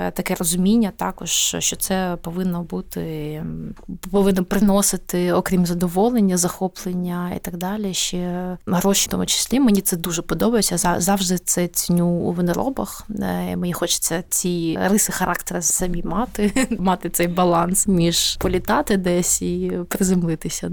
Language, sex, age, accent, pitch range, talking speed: Ukrainian, female, 20-39, native, 175-200 Hz, 125 wpm